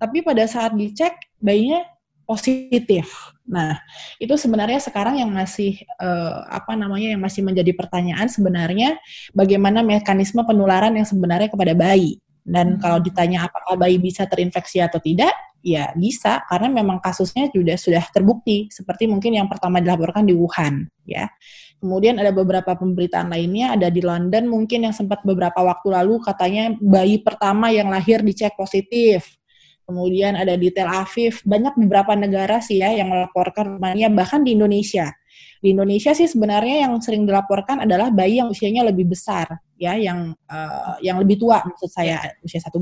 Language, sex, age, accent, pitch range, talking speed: Indonesian, female, 20-39, native, 180-220 Hz, 155 wpm